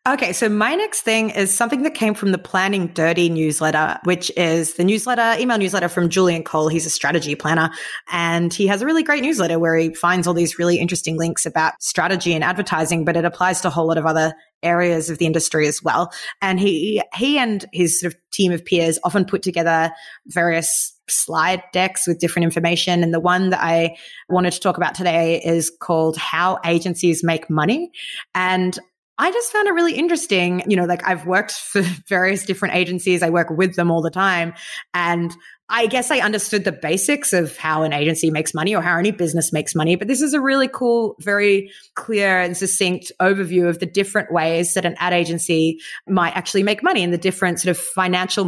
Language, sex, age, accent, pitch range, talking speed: English, female, 20-39, Australian, 170-195 Hz, 205 wpm